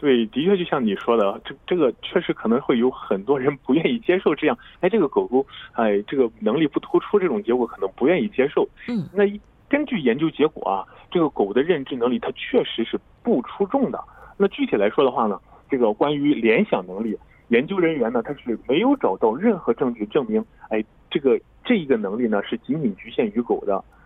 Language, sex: Korean, male